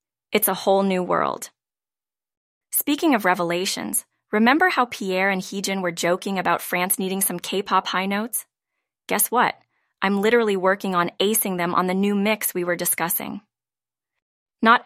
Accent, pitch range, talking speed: American, 175-215 Hz, 155 wpm